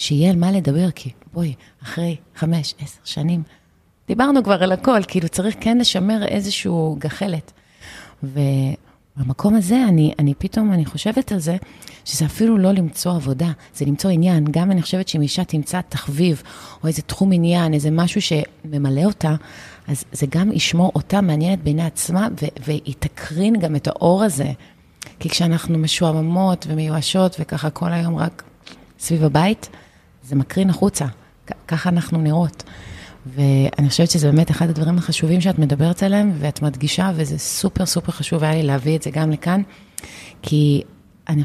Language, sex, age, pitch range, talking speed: Hebrew, female, 30-49, 150-185 Hz, 155 wpm